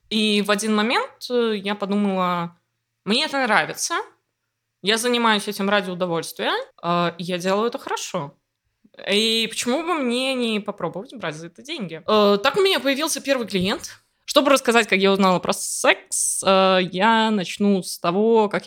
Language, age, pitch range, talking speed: Russian, 20-39, 175-220 Hz, 150 wpm